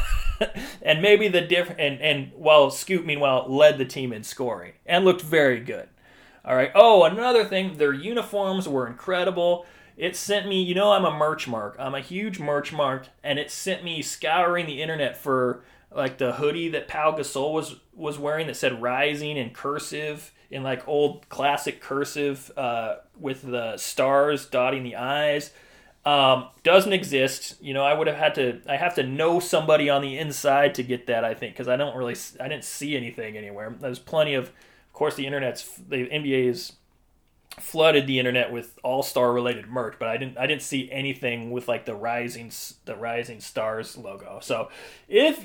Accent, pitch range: American, 130-180 Hz